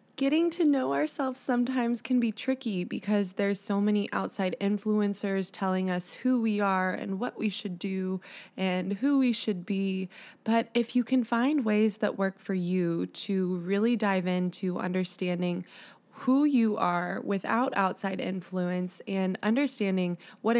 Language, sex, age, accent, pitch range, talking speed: English, female, 20-39, American, 185-225 Hz, 155 wpm